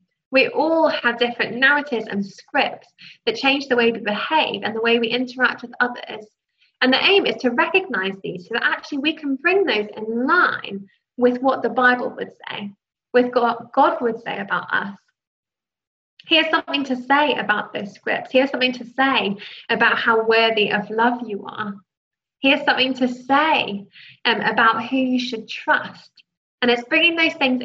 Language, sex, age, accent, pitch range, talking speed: English, female, 10-29, British, 220-280 Hz, 180 wpm